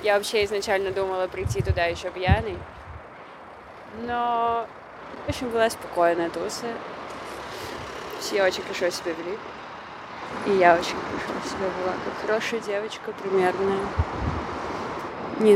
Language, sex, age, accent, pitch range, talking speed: Russian, female, 20-39, native, 170-195 Hz, 115 wpm